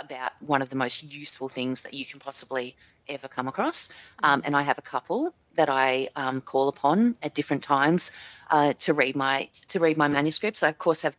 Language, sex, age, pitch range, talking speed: English, female, 30-49, 140-160 Hz, 215 wpm